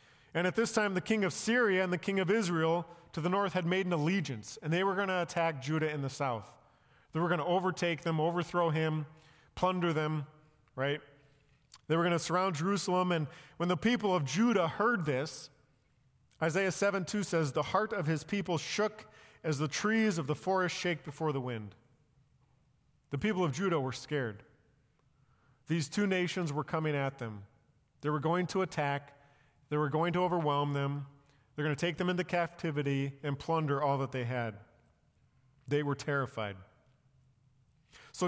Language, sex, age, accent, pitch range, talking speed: English, male, 40-59, American, 135-175 Hz, 180 wpm